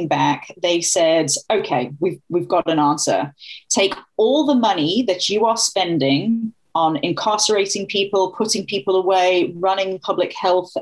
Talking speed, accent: 145 wpm, British